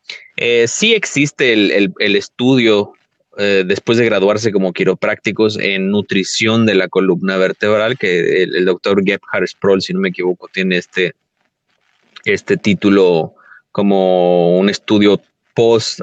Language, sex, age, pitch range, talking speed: Spanish, male, 30-49, 95-115 Hz, 140 wpm